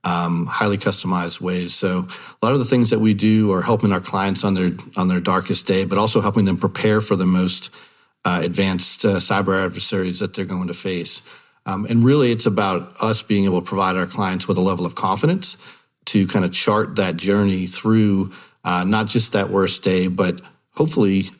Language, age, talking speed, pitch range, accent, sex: English, 40-59, 205 wpm, 90-110 Hz, American, male